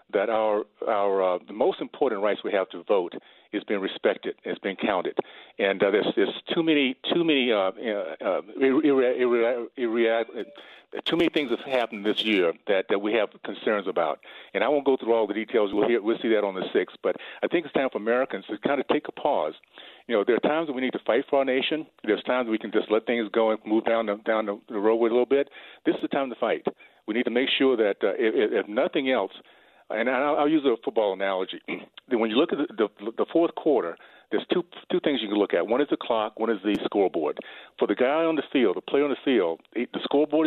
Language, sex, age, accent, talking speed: English, male, 50-69, American, 250 wpm